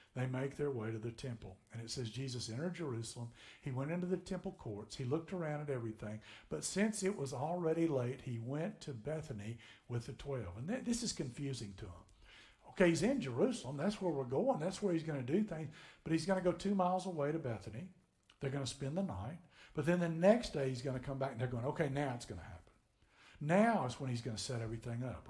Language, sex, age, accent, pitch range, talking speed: English, male, 60-79, American, 125-180 Hz, 245 wpm